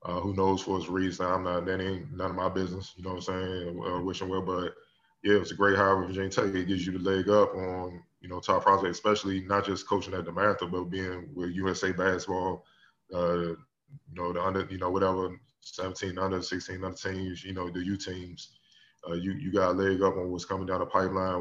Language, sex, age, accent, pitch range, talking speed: English, male, 20-39, American, 90-95 Hz, 235 wpm